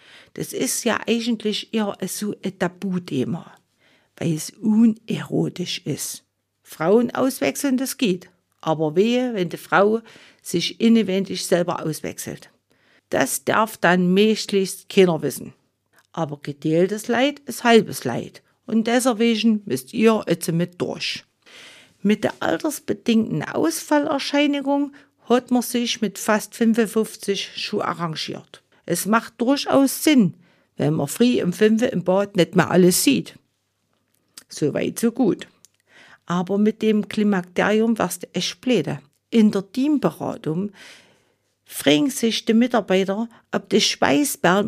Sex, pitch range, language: female, 180-235 Hz, German